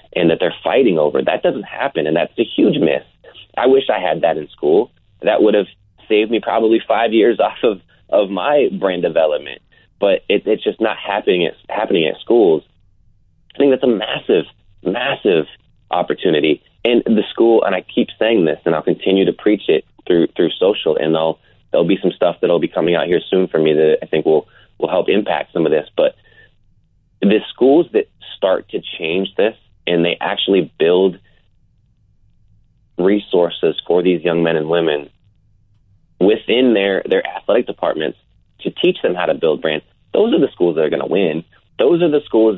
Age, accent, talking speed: 30-49, American, 190 wpm